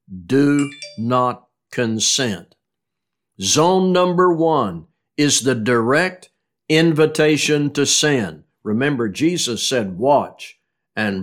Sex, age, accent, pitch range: male, 60-79, American, 125-160 Hz